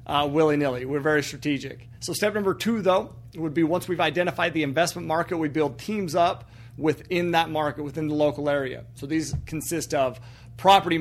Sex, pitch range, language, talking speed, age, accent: male, 140-175 Hz, English, 185 wpm, 40-59, American